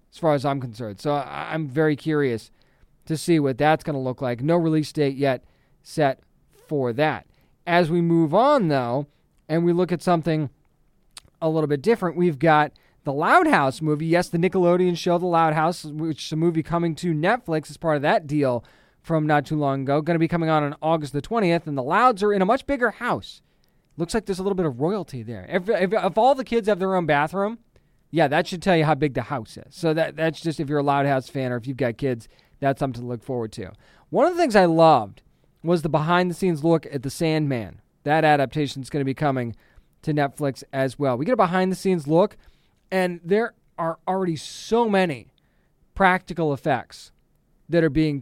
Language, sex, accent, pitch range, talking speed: English, male, American, 140-175 Hz, 220 wpm